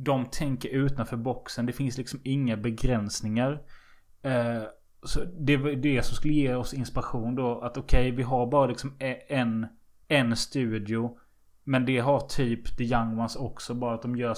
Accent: native